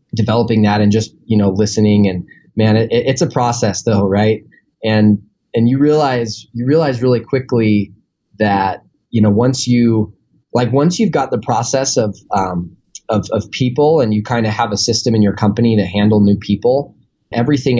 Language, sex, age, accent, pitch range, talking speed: English, male, 10-29, American, 105-120 Hz, 180 wpm